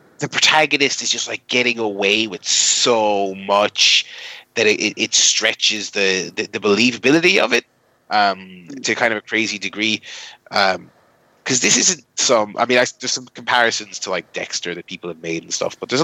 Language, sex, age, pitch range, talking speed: English, male, 30-49, 100-125 Hz, 185 wpm